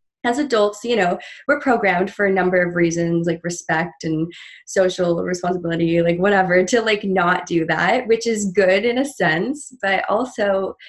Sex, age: female, 20-39